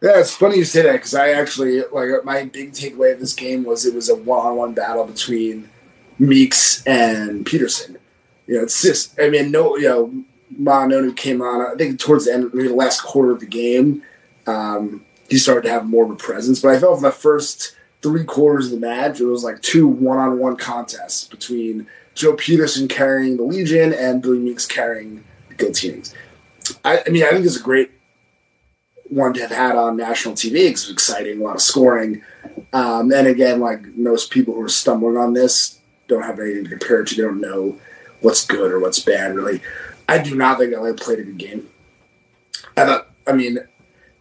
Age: 30-49